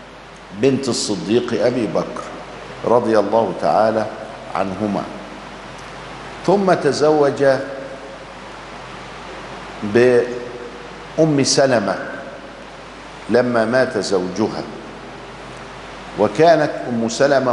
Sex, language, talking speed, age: male, Arabic, 60 wpm, 50-69